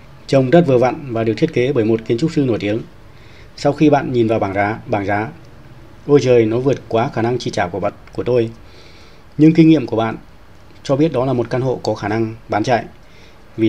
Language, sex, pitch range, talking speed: Vietnamese, male, 110-135 Hz, 240 wpm